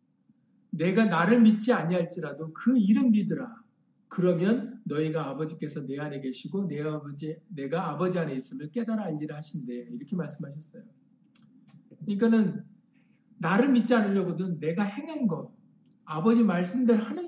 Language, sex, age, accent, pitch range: Korean, male, 50-69, native, 165-225 Hz